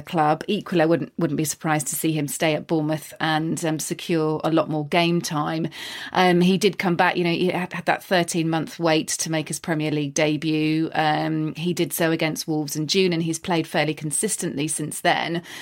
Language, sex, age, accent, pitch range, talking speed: English, female, 30-49, British, 160-190 Hz, 210 wpm